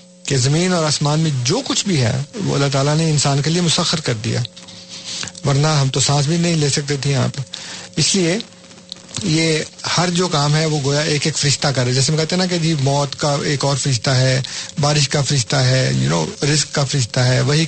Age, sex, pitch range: 50-69, male, 130-165 Hz